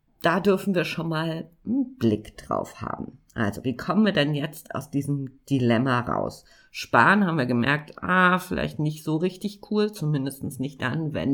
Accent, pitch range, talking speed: German, 125-185 Hz, 175 wpm